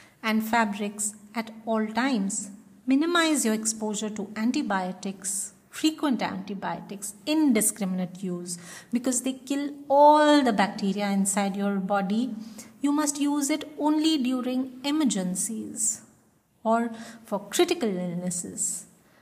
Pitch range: 200-245 Hz